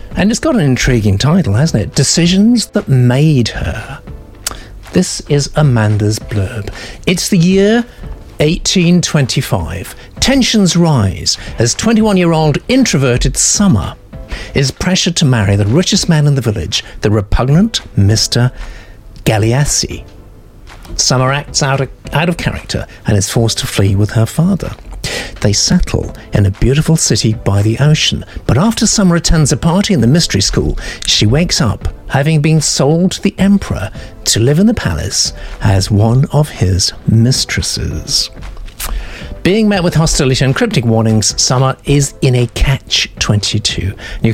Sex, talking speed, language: male, 140 wpm, English